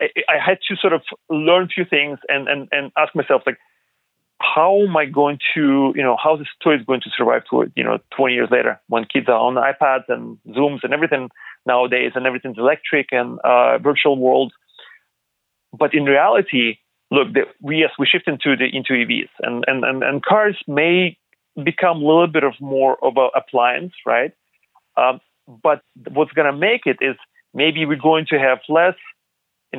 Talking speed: 195 wpm